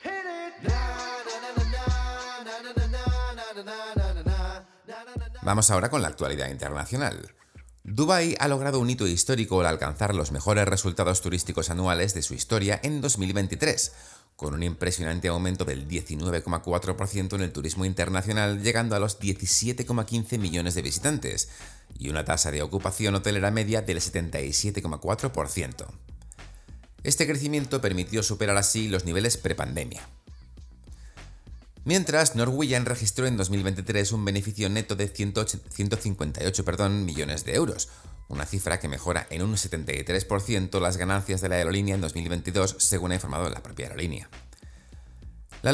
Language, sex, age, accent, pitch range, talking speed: Spanish, male, 30-49, Spanish, 85-115 Hz, 120 wpm